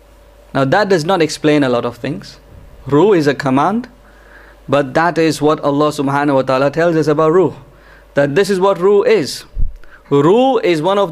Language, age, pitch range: English, 20-39, 145-190 Hz